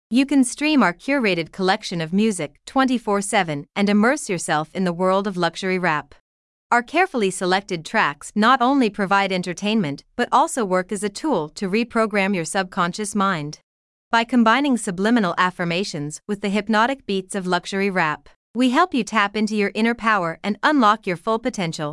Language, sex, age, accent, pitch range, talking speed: English, female, 30-49, American, 180-230 Hz, 165 wpm